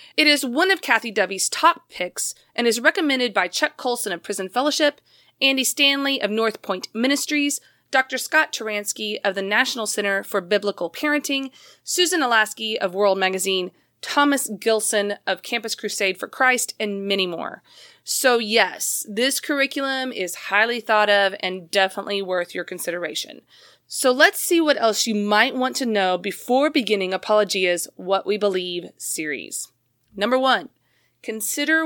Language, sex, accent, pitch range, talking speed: English, female, American, 195-265 Hz, 155 wpm